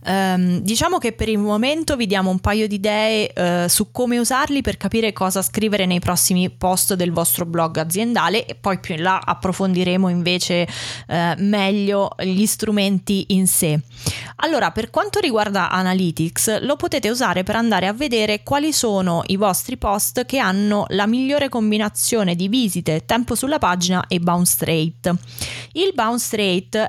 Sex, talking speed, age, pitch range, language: female, 155 wpm, 20-39, 180-220 Hz, Italian